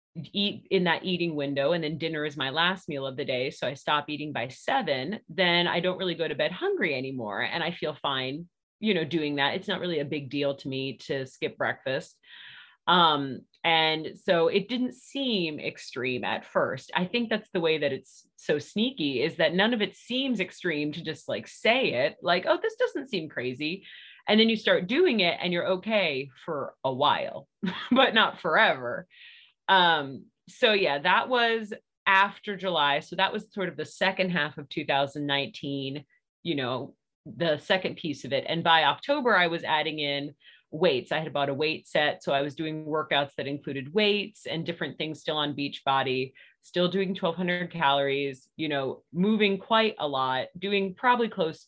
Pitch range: 140-195 Hz